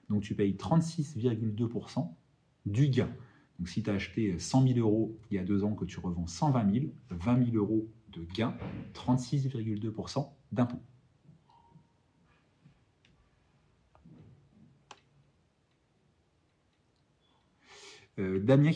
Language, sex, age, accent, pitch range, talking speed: French, male, 40-59, French, 105-135 Hz, 100 wpm